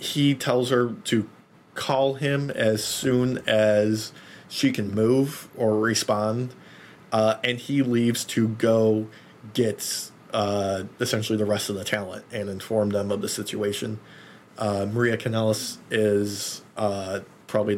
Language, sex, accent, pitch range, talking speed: English, male, American, 105-120 Hz, 135 wpm